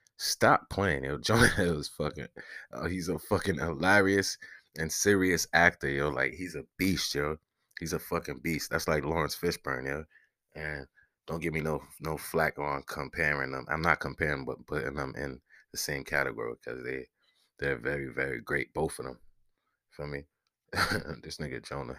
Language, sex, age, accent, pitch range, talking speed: English, male, 20-39, American, 75-90 Hz, 170 wpm